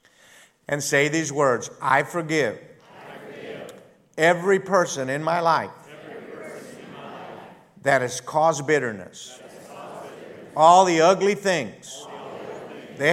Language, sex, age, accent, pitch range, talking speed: English, male, 50-69, American, 145-195 Hz, 90 wpm